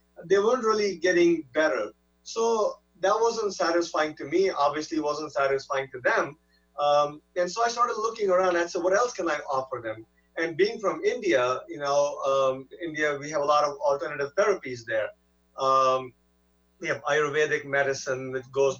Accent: Indian